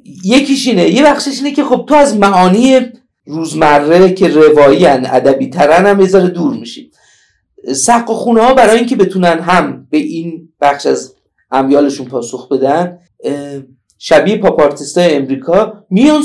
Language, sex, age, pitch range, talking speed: Persian, male, 50-69, 145-205 Hz, 135 wpm